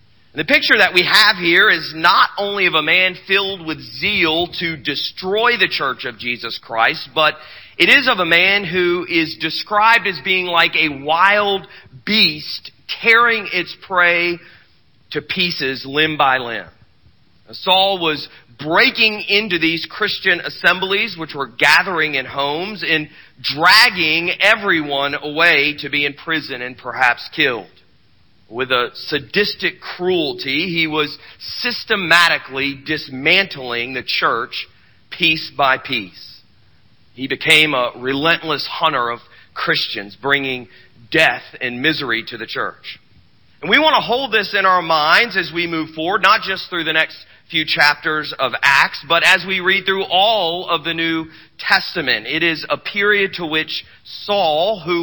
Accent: American